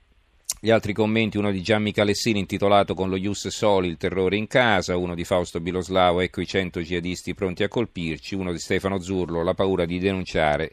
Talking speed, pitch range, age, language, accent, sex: 195 wpm, 95-110 Hz, 40-59, Italian, native, male